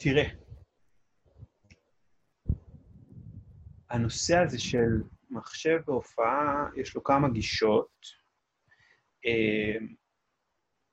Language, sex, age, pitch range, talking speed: Hebrew, male, 30-49, 110-135 Hz, 60 wpm